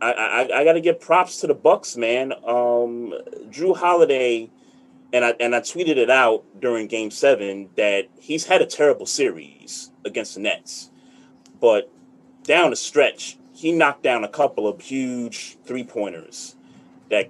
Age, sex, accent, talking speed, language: 30-49, male, American, 160 wpm, English